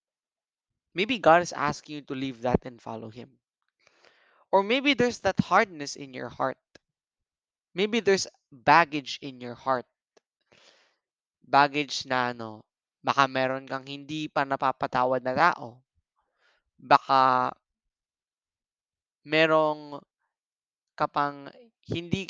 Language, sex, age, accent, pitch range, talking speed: English, male, 20-39, Filipino, 130-165 Hz, 110 wpm